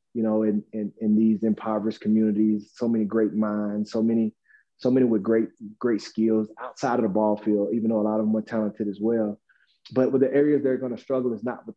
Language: English